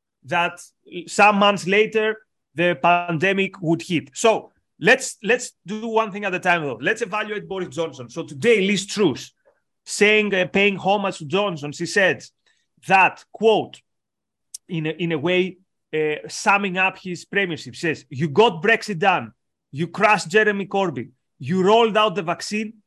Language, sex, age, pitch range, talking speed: English, male, 30-49, 170-215 Hz, 155 wpm